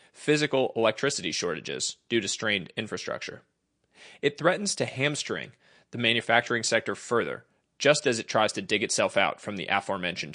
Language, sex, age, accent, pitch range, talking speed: English, male, 30-49, American, 115-150 Hz, 150 wpm